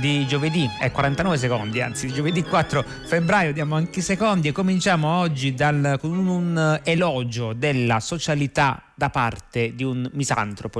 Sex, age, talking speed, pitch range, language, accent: male, 30-49, 155 wpm, 120-145 Hz, Italian, native